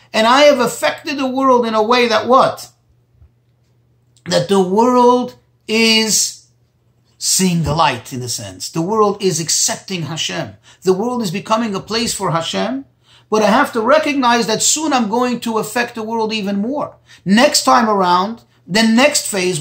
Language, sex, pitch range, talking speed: English, male, 155-235 Hz, 170 wpm